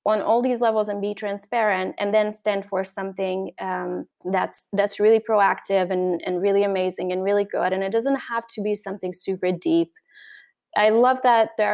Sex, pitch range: female, 190-225 Hz